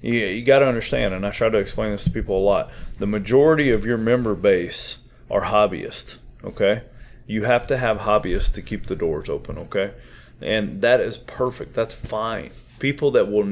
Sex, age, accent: male, 30-49, American